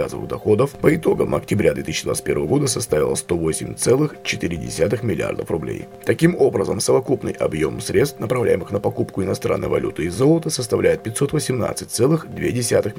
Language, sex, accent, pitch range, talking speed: Russian, male, native, 105-145 Hz, 110 wpm